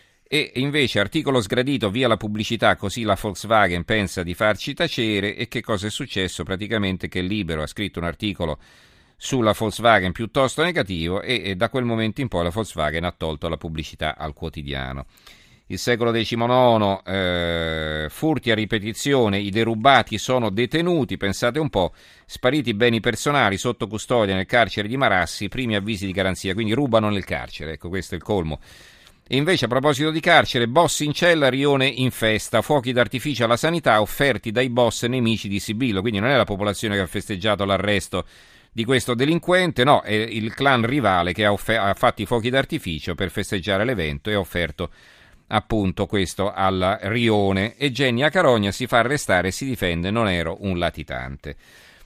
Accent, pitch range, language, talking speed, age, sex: native, 95-125 Hz, Italian, 175 wpm, 40-59, male